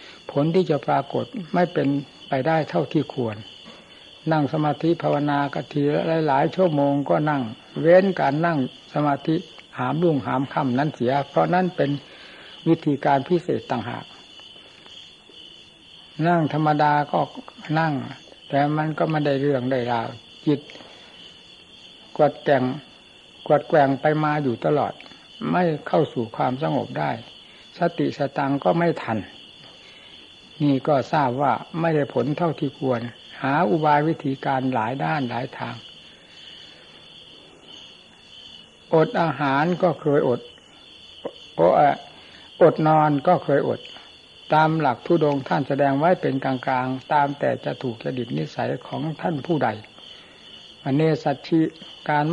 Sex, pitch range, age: male, 135-160 Hz, 60-79